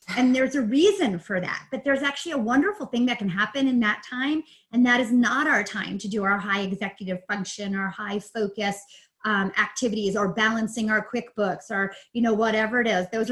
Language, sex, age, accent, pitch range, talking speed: English, female, 30-49, American, 205-260 Hz, 210 wpm